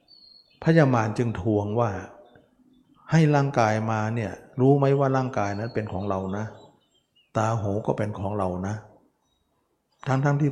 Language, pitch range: Thai, 100-130 Hz